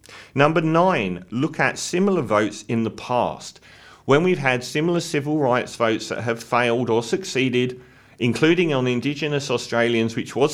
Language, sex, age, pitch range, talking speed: English, male, 40-59, 105-140 Hz, 155 wpm